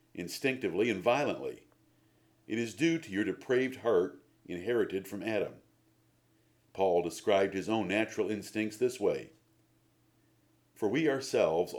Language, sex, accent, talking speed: English, male, American, 120 wpm